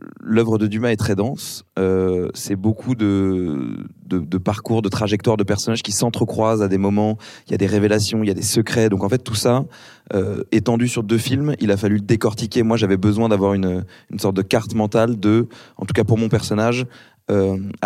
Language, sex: French, male